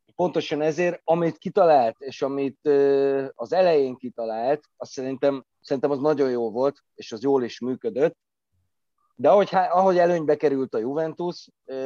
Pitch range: 125-160 Hz